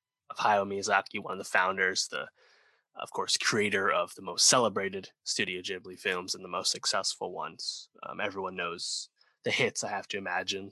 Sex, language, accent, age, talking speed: male, English, American, 20-39, 180 wpm